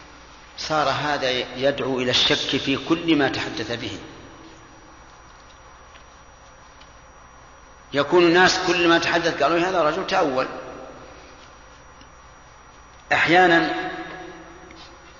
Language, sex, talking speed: Arabic, male, 80 wpm